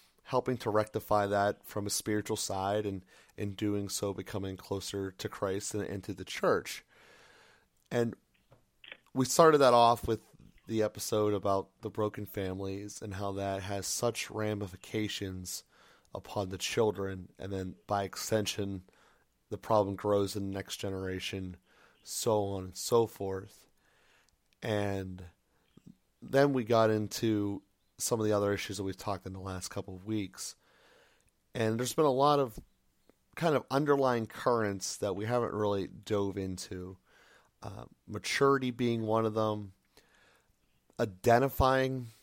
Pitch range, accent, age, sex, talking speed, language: 100-115 Hz, American, 30-49, male, 140 wpm, English